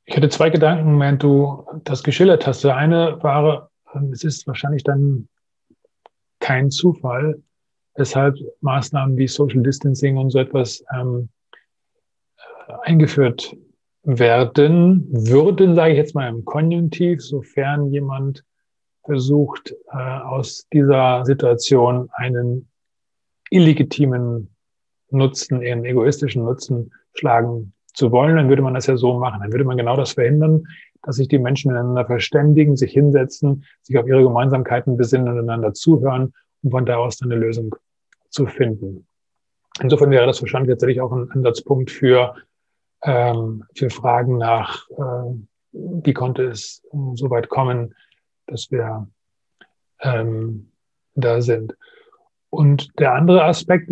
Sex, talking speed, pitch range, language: male, 130 wpm, 125-145 Hz, German